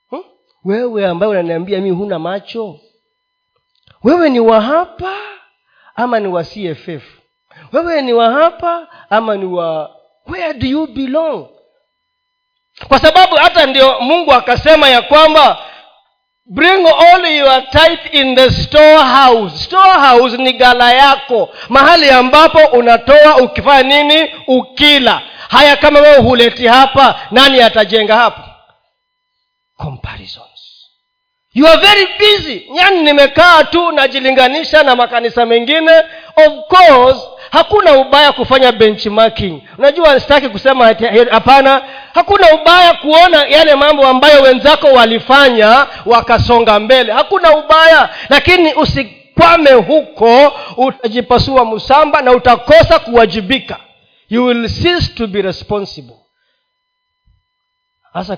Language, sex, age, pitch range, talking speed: Swahili, male, 40-59, 230-320 Hz, 110 wpm